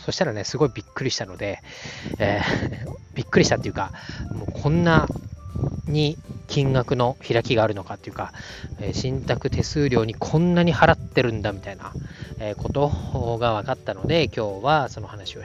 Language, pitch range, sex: Japanese, 105-135 Hz, male